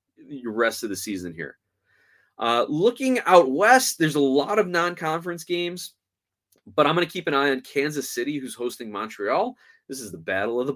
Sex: male